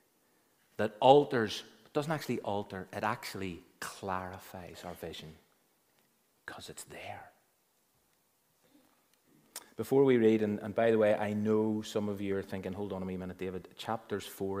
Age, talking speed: 30-49, 150 wpm